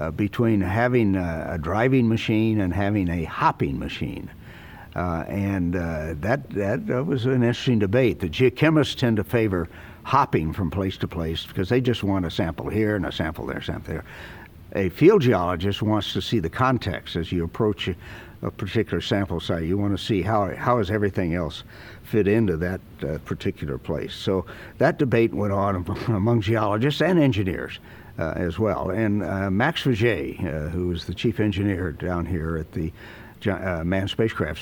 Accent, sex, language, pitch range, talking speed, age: American, male, English, 90-115 Hz, 185 wpm, 60-79